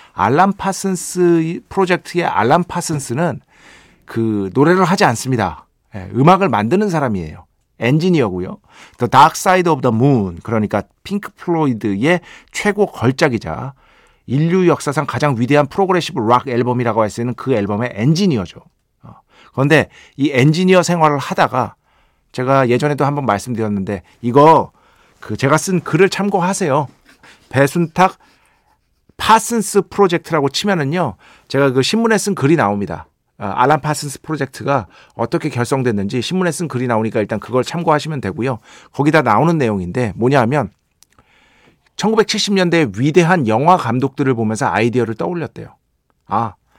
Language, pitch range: Korean, 115-180 Hz